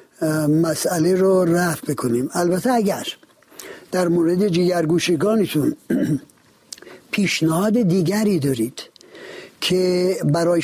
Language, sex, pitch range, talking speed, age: Persian, male, 170-225 Hz, 80 wpm, 60-79